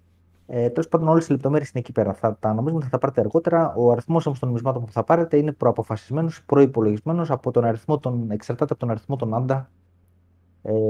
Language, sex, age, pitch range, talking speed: Greek, male, 30-49, 100-130 Hz, 200 wpm